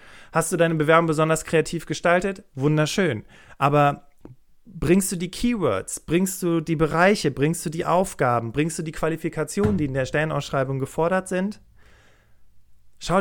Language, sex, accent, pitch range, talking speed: German, male, German, 140-180 Hz, 145 wpm